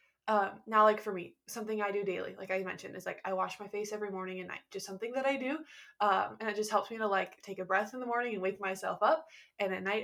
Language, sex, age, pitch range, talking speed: English, female, 20-39, 195-220 Hz, 285 wpm